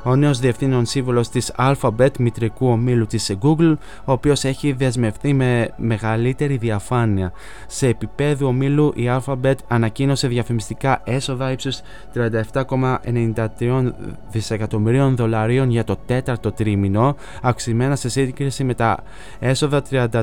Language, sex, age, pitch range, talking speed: Greek, male, 20-39, 110-130 Hz, 115 wpm